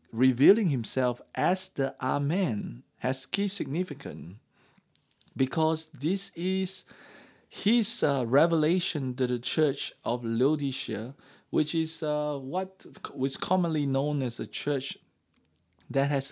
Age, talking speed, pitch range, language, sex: 50-69, 115 wpm, 130-165 Hz, English, male